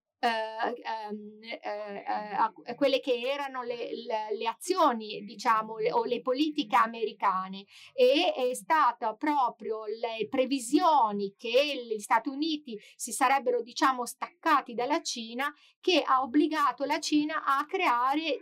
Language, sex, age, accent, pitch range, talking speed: Italian, female, 40-59, native, 205-285 Hz, 145 wpm